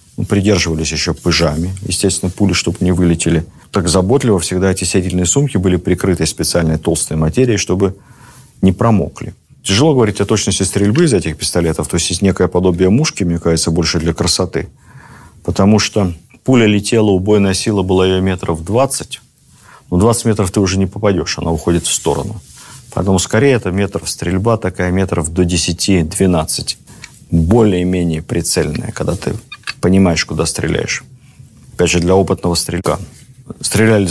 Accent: native